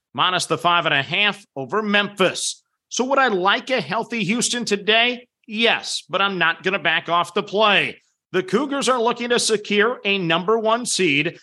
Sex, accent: male, American